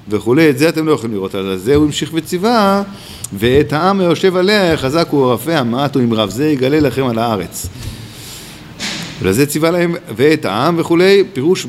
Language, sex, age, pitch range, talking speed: Hebrew, male, 50-69, 105-145 Hz, 165 wpm